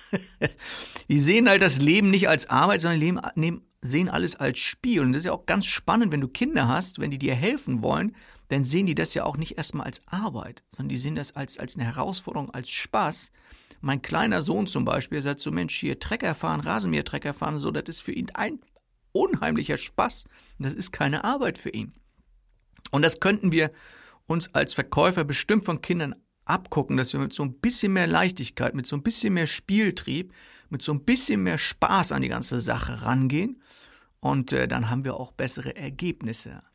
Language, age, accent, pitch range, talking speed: German, 50-69, German, 135-195 Hz, 200 wpm